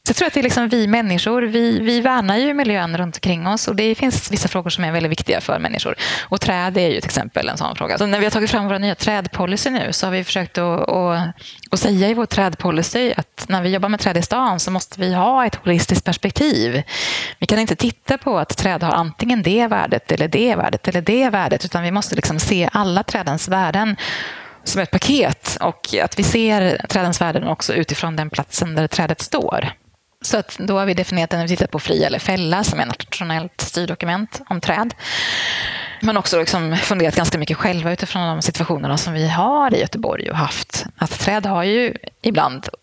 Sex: female